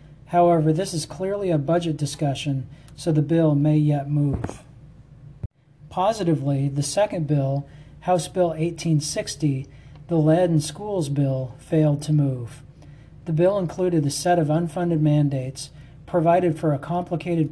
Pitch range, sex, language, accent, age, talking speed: 140-165 Hz, male, English, American, 40-59, 135 wpm